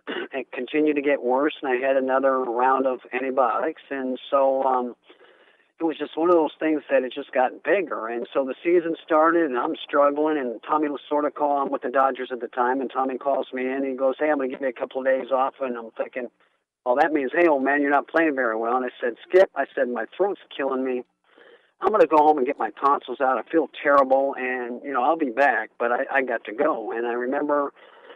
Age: 50-69